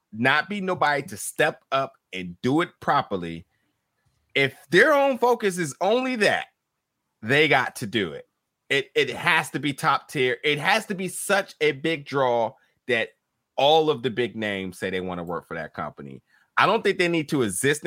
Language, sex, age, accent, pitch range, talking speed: English, male, 30-49, American, 105-165 Hz, 195 wpm